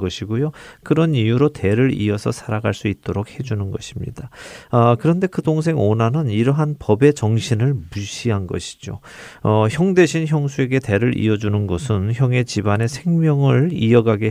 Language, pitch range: Korean, 105-140 Hz